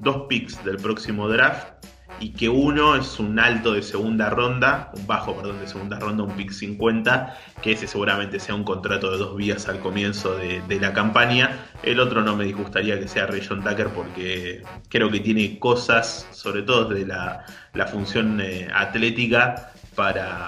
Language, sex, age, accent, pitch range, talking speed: Spanish, male, 20-39, Argentinian, 95-110 Hz, 180 wpm